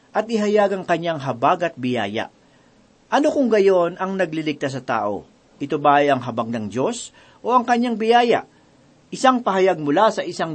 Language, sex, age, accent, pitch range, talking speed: Filipino, male, 40-59, native, 145-205 Hz, 170 wpm